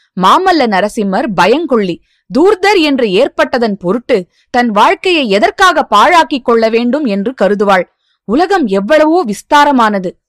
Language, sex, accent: Tamil, female, native